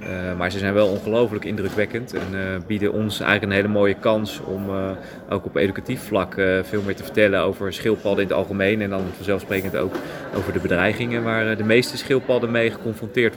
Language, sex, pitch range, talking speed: Dutch, male, 100-130 Hz, 205 wpm